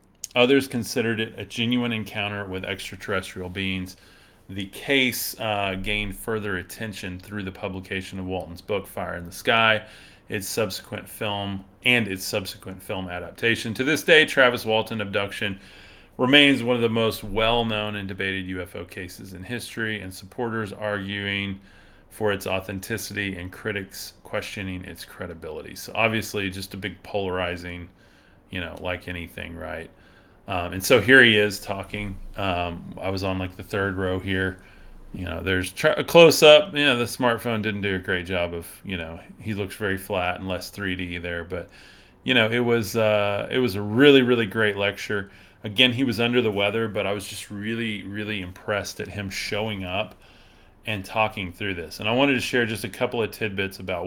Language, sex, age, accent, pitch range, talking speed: English, male, 30-49, American, 95-110 Hz, 180 wpm